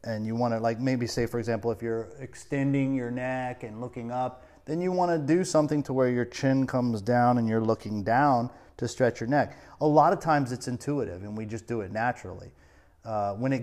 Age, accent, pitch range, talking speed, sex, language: 30-49, American, 105-130 Hz, 230 wpm, male, English